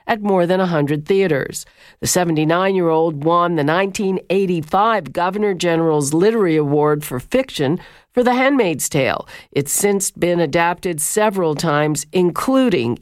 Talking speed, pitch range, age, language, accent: 125 wpm, 150-200 Hz, 50-69, English, American